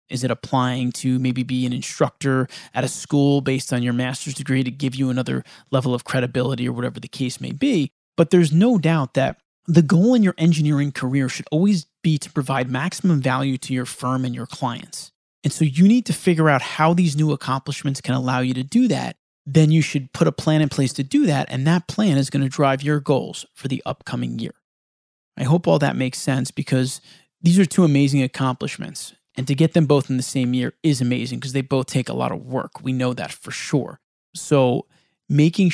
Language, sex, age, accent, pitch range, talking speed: English, male, 30-49, American, 130-165 Hz, 220 wpm